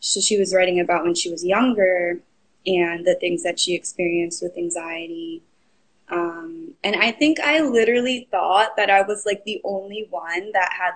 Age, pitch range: 20-39, 185-250 Hz